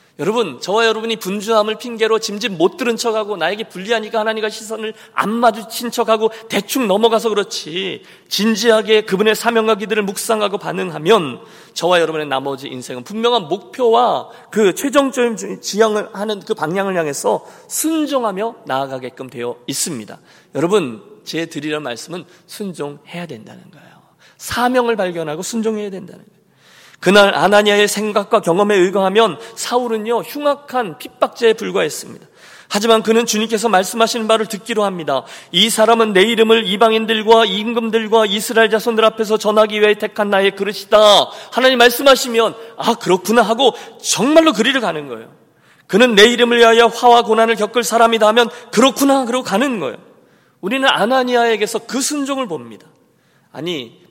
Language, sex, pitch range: Korean, male, 205-235 Hz